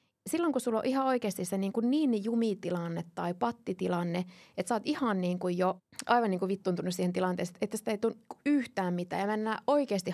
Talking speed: 215 wpm